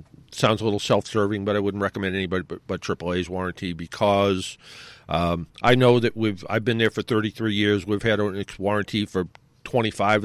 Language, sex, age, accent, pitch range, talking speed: English, male, 50-69, American, 100-130 Hz, 180 wpm